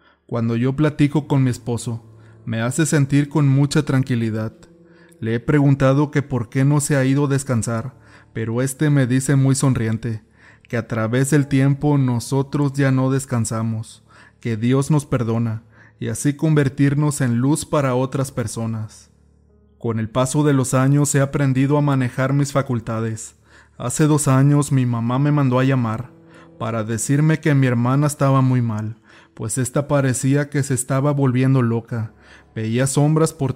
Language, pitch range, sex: Spanish, 115-145 Hz, male